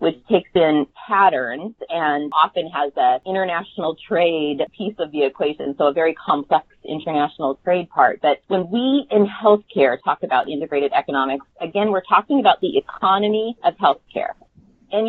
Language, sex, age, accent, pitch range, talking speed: English, female, 30-49, American, 155-215 Hz, 155 wpm